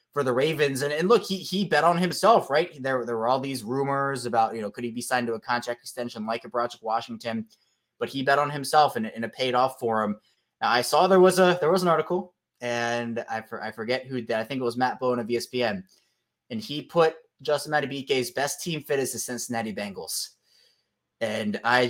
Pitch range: 120-150 Hz